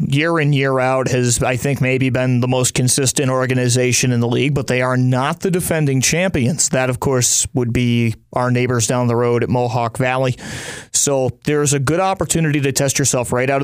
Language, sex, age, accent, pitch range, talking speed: English, male, 30-49, American, 125-140 Hz, 200 wpm